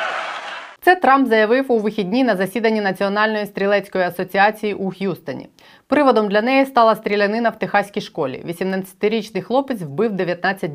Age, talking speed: 30-49, 135 wpm